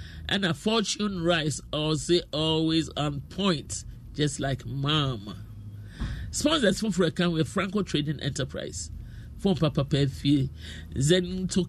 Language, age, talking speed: English, 50-69, 120 wpm